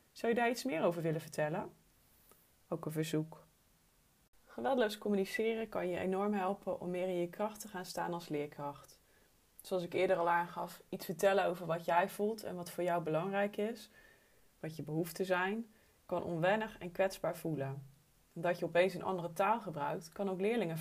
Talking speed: 180 wpm